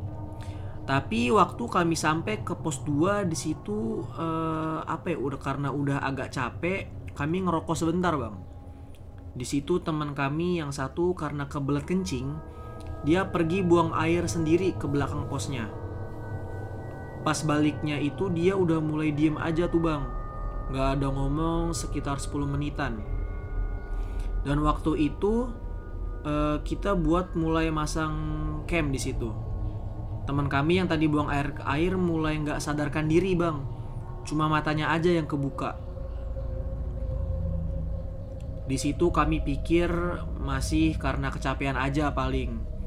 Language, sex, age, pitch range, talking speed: Indonesian, male, 20-39, 110-160 Hz, 125 wpm